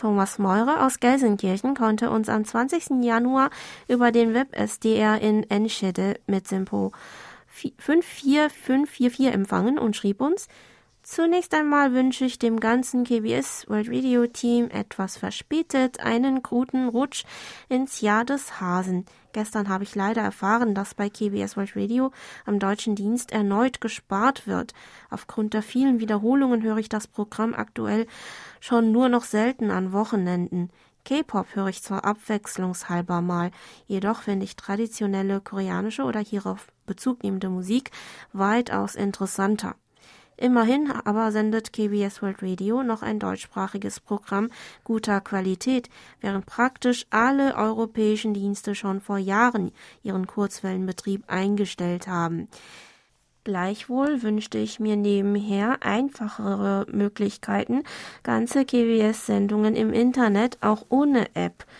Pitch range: 200-245 Hz